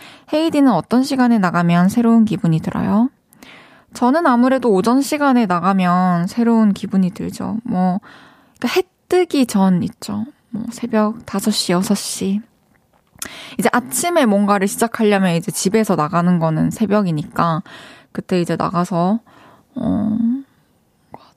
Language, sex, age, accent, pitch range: Korean, female, 20-39, native, 180-235 Hz